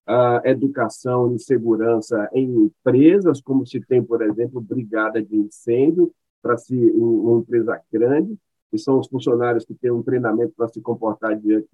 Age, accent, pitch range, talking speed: 50-69, Brazilian, 115-150 Hz, 165 wpm